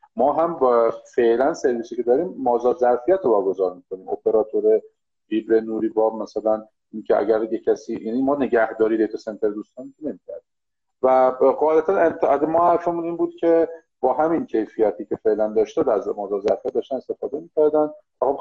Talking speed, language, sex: 155 wpm, Persian, male